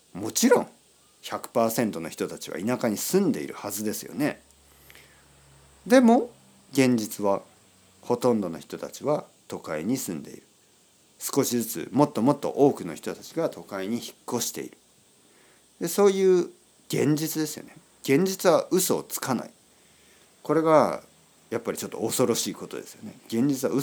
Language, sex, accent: Japanese, male, native